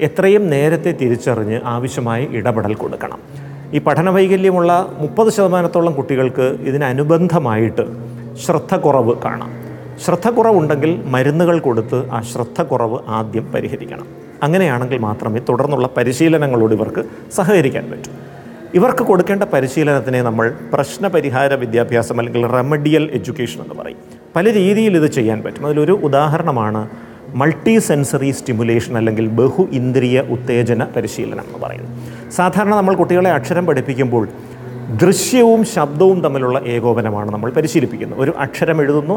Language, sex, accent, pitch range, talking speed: Malayalam, male, native, 120-165 Hz, 110 wpm